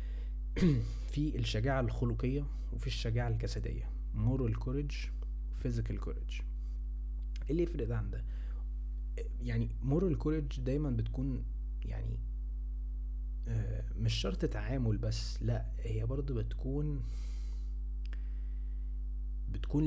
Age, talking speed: 20-39, 85 wpm